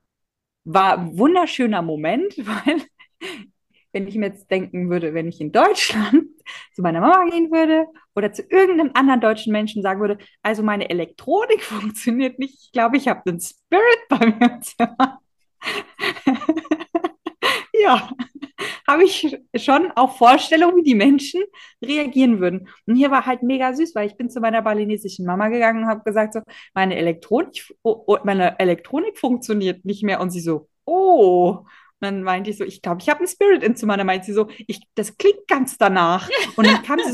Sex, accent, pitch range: female, German, 205-310 Hz